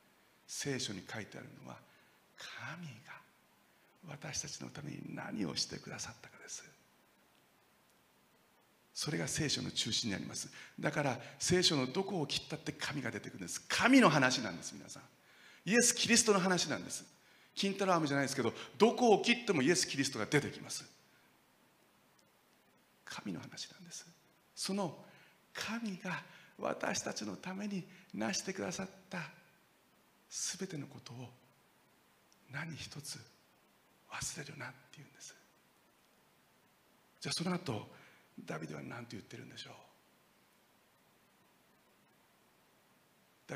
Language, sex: Japanese, male